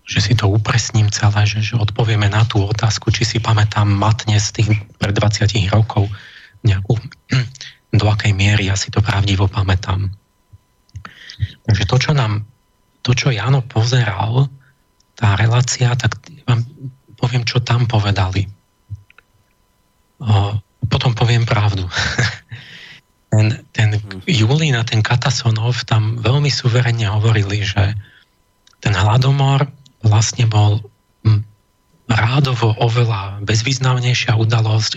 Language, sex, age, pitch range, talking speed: Slovak, male, 40-59, 100-120 Hz, 115 wpm